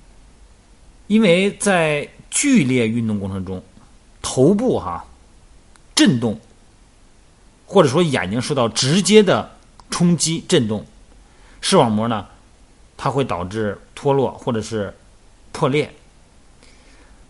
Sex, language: male, Chinese